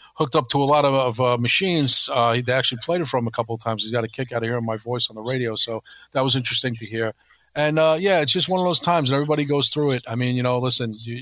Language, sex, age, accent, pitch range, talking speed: English, male, 40-59, American, 115-135 Hz, 310 wpm